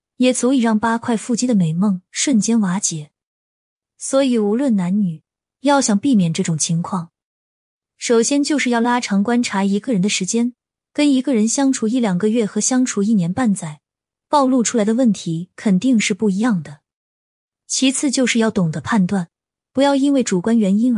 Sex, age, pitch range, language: female, 20-39, 185-245 Hz, Chinese